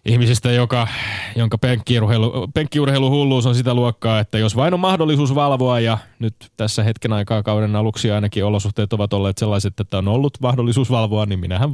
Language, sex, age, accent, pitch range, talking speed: Finnish, male, 20-39, native, 100-125 Hz, 165 wpm